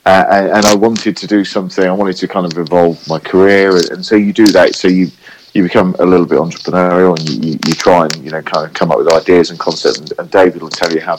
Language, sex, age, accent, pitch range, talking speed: English, male, 40-59, British, 85-100 Hz, 275 wpm